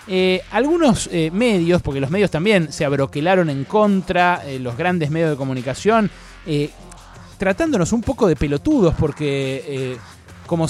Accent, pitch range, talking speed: Argentinian, 155-220 Hz, 150 wpm